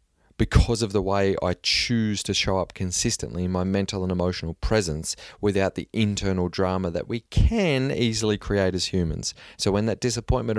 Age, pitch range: 30-49, 95-110 Hz